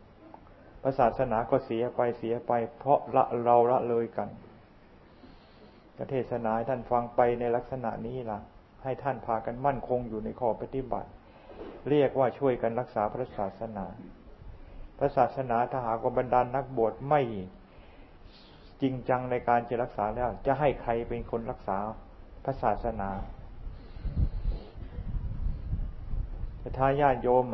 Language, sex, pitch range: Thai, male, 110-130 Hz